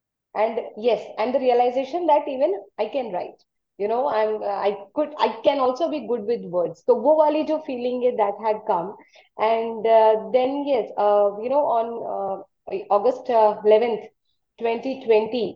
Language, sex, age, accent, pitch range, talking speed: English, female, 20-39, Indian, 205-260 Hz, 160 wpm